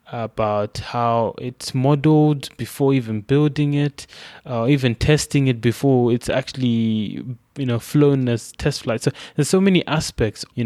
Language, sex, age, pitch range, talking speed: English, male, 20-39, 115-135 Hz, 160 wpm